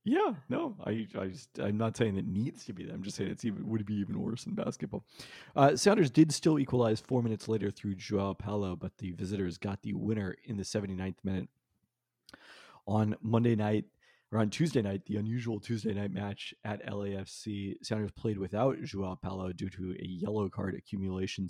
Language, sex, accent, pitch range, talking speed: English, male, American, 95-115 Hz, 200 wpm